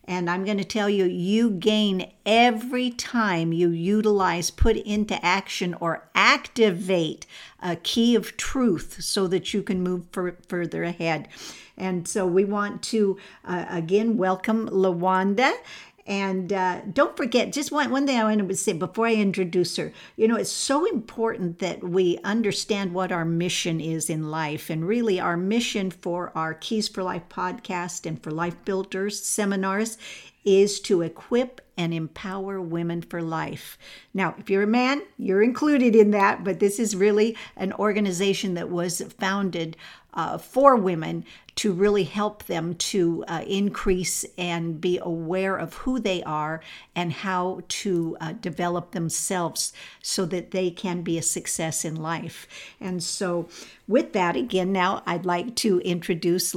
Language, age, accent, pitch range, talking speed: English, 60-79, American, 175-210 Hz, 160 wpm